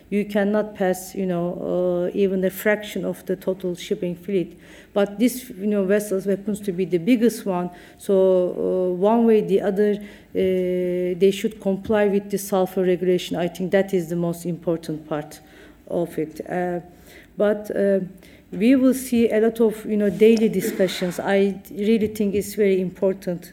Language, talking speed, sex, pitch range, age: English, 175 wpm, female, 185-215 Hz, 50-69